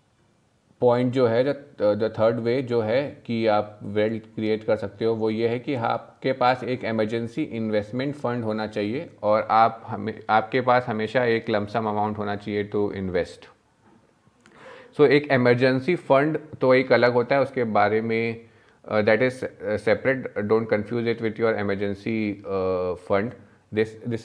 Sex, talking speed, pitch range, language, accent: male, 160 wpm, 105-120 Hz, Hindi, native